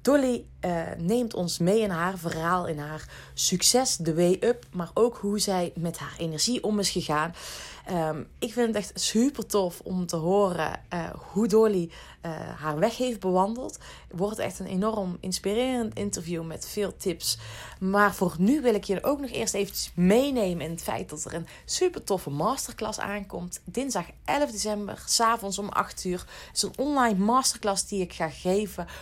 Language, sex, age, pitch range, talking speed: Dutch, female, 30-49, 170-220 Hz, 185 wpm